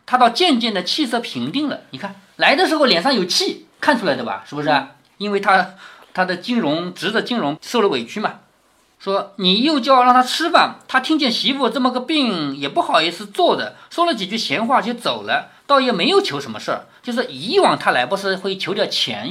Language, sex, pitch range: Chinese, male, 185-280 Hz